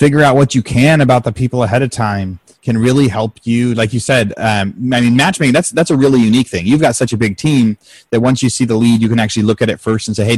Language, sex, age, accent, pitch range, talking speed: English, male, 30-49, American, 110-135 Hz, 290 wpm